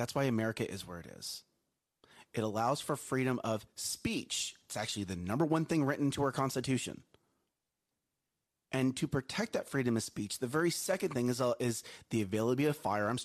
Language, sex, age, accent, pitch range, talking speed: English, male, 30-49, American, 120-185 Hz, 185 wpm